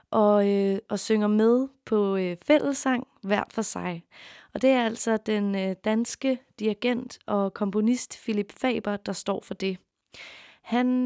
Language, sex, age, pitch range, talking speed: Danish, female, 20-39, 195-225 Hz, 135 wpm